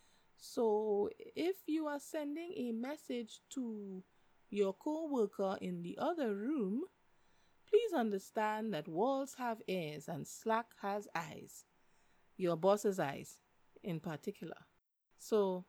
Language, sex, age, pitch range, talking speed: English, female, 30-49, 175-255 Hz, 115 wpm